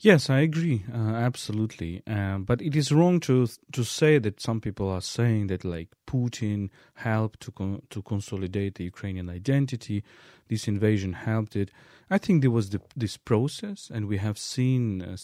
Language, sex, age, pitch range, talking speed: English, male, 40-59, 95-120 Hz, 175 wpm